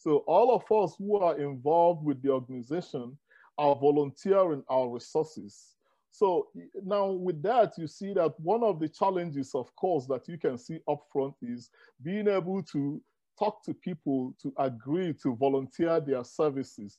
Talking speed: 160 wpm